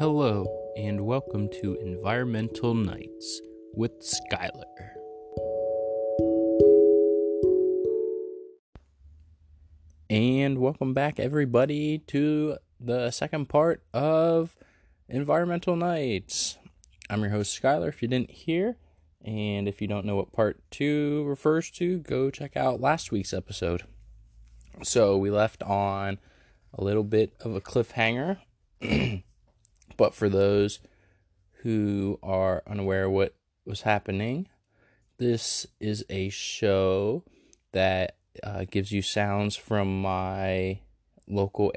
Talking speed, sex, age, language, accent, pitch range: 110 wpm, male, 20-39, English, American, 95-125 Hz